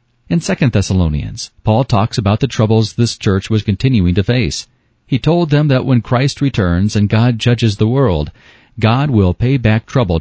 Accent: American